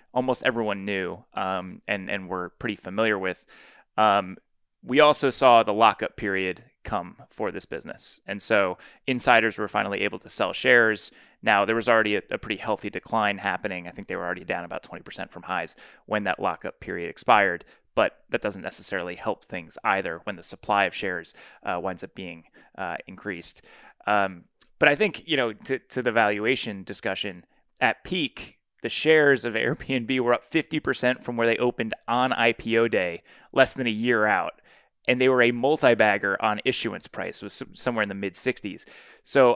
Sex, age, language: male, 20-39, English